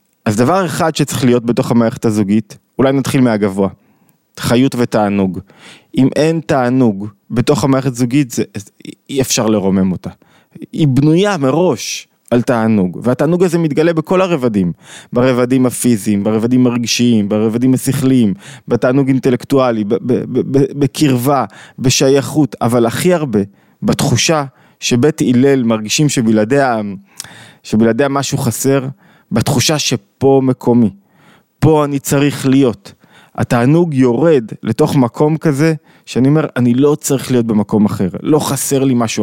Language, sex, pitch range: Hebrew, male, 115-145 Hz